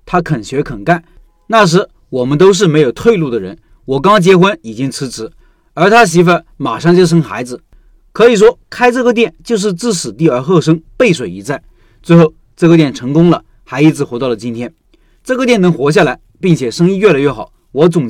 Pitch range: 145-195 Hz